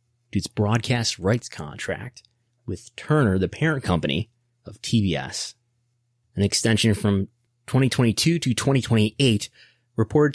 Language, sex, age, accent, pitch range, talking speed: English, male, 30-49, American, 100-125 Hz, 130 wpm